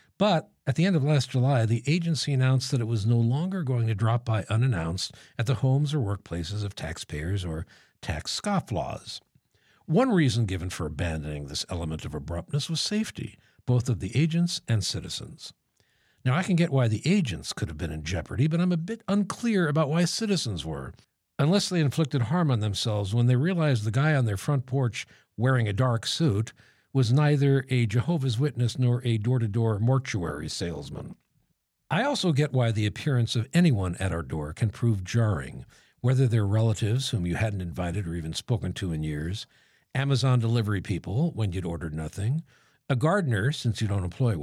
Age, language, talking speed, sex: 60-79, English, 185 wpm, male